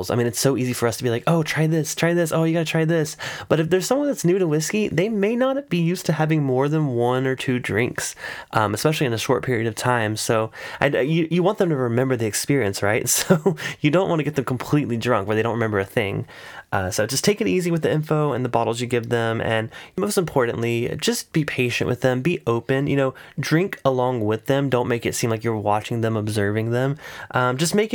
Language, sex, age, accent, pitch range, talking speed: English, male, 10-29, American, 120-160 Hz, 255 wpm